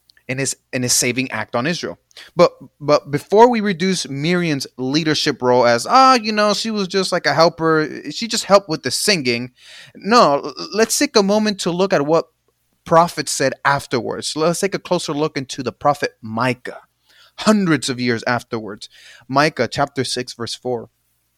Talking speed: 175 wpm